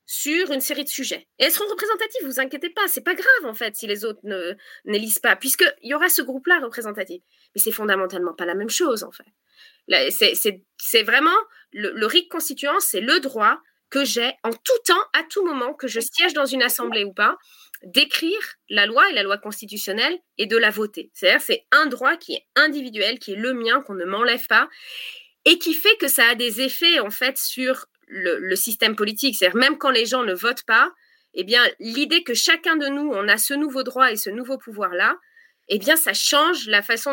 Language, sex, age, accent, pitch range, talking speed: French, female, 20-39, French, 215-310 Hz, 225 wpm